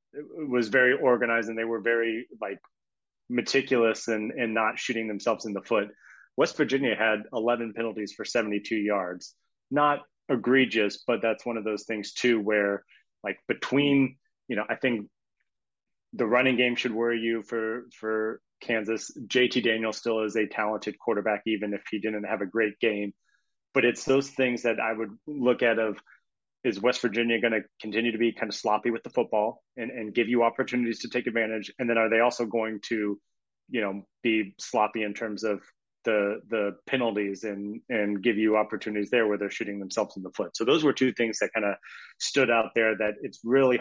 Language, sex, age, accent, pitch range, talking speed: English, male, 30-49, American, 105-120 Hz, 190 wpm